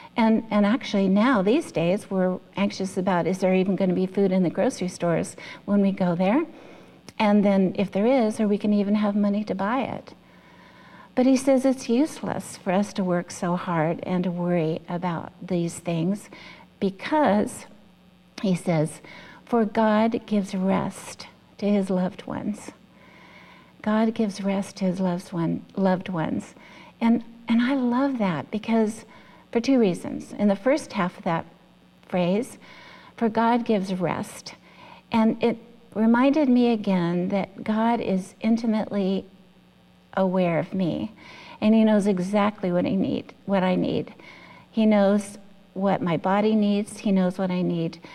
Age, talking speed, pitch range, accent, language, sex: 60-79, 155 wpm, 185-225 Hz, American, English, female